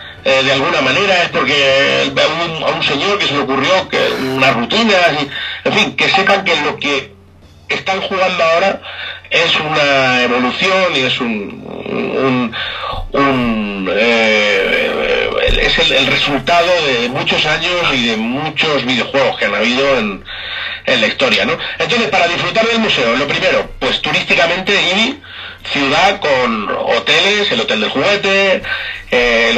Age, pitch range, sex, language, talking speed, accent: 40-59, 130-190 Hz, male, Spanish, 155 wpm, Spanish